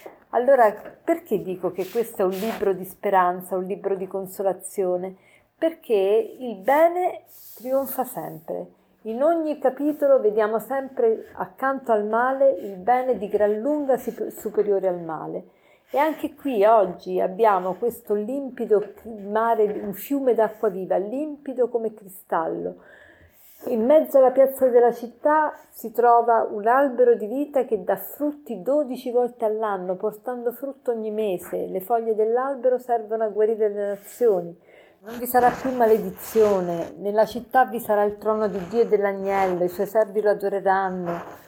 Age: 50-69